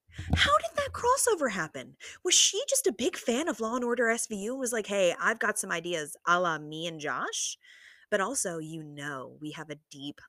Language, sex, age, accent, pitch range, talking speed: English, female, 20-39, American, 155-220 Hz, 210 wpm